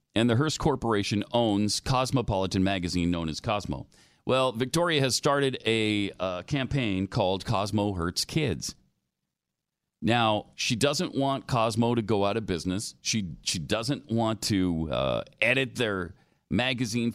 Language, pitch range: English, 100-140 Hz